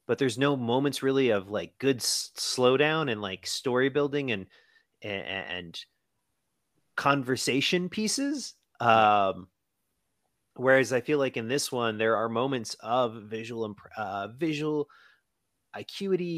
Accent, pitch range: American, 105-130 Hz